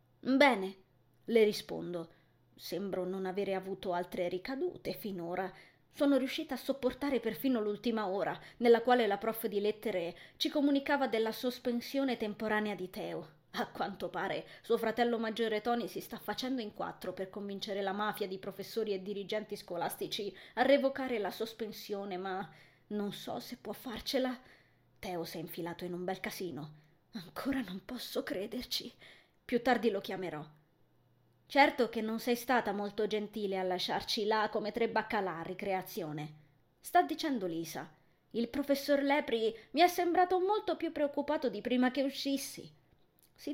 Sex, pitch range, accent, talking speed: female, 190-255 Hz, native, 150 wpm